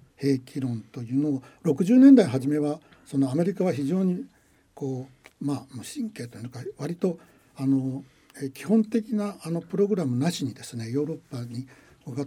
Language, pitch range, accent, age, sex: Japanese, 125-170 Hz, native, 60-79, male